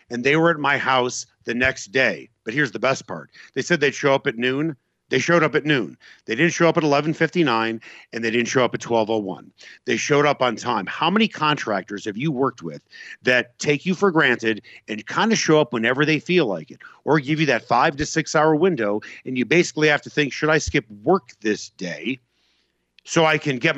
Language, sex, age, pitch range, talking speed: English, male, 50-69, 115-155 Hz, 225 wpm